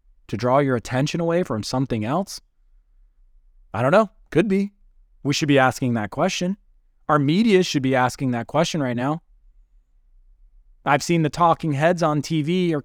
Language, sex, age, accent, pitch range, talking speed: English, male, 20-39, American, 120-180 Hz, 170 wpm